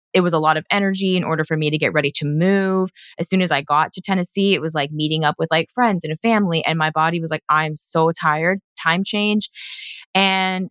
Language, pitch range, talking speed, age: English, 160-195 Hz, 245 wpm, 20-39